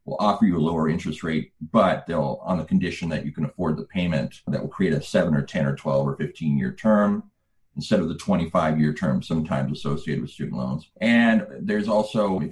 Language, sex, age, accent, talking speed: English, male, 30-49, American, 220 wpm